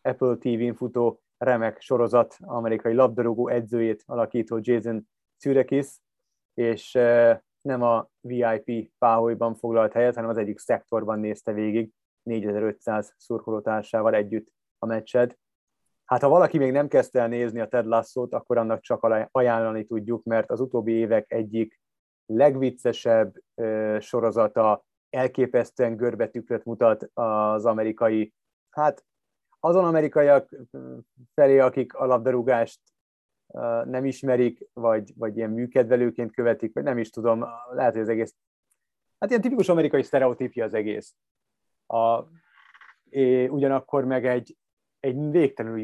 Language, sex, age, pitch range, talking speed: Hungarian, male, 30-49, 110-125 Hz, 120 wpm